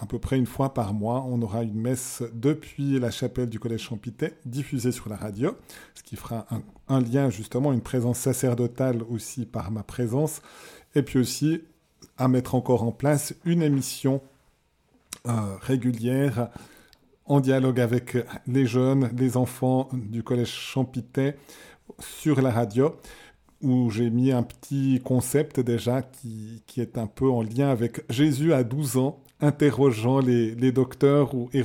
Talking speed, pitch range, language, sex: 160 wpm, 115-135 Hz, French, male